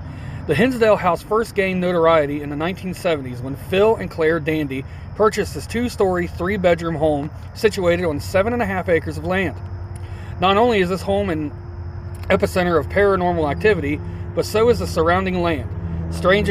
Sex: male